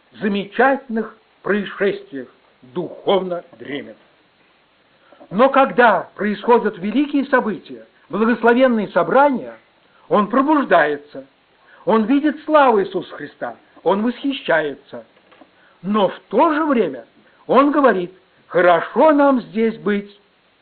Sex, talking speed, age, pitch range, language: male, 90 wpm, 60-79, 175-260 Hz, Russian